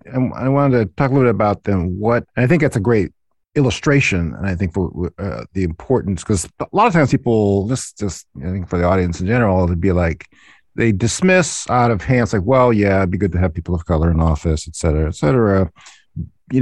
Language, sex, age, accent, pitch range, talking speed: English, male, 50-69, American, 90-125 Hz, 235 wpm